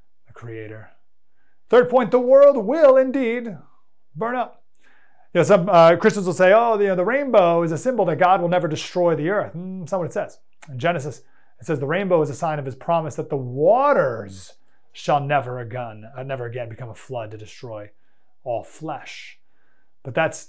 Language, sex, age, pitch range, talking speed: English, male, 30-49, 135-210 Hz, 200 wpm